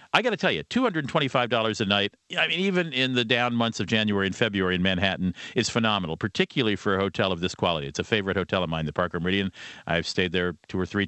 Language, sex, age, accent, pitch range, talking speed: English, male, 50-69, American, 95-125 Hz, 265 wpm